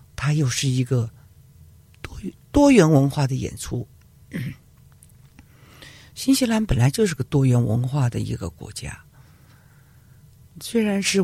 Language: Chinese